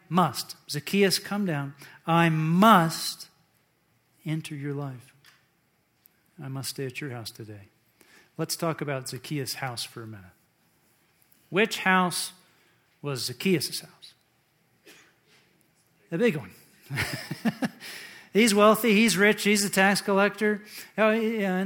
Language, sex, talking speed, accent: English, male, 120 wpm, American